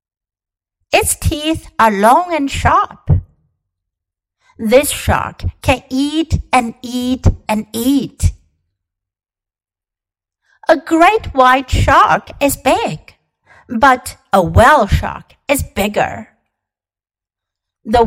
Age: 60-79